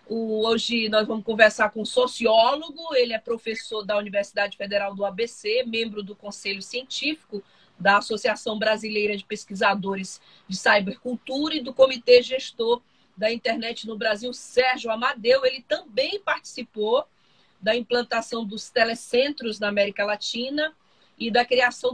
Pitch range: 205-255 Hz